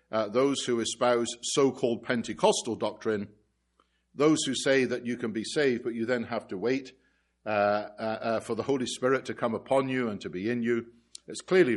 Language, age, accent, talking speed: English, 50-69, British, 200 wpm